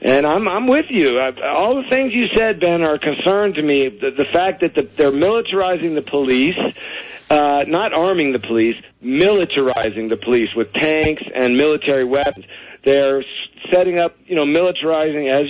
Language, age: English, 50-69